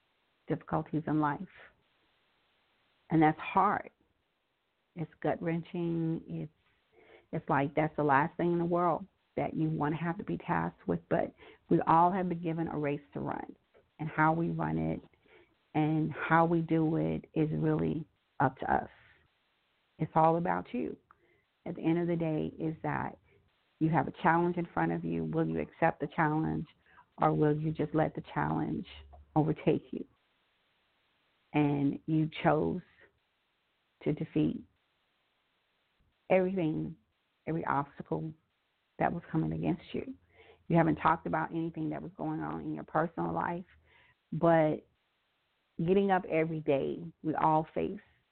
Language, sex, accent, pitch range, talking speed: English, female, American, 140-165 Hz, 150 wpm